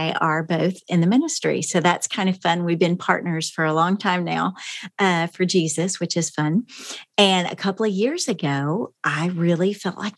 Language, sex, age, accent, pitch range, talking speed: English, female, 40-59, American, 170-210 Hz, 200 wpm